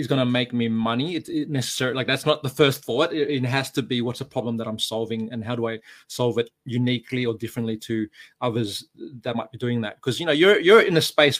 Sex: male